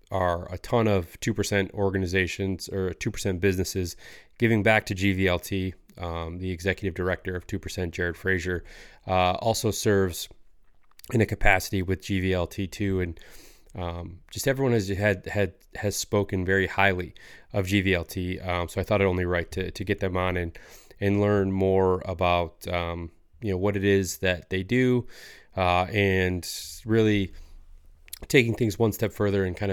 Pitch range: 90-105 Hz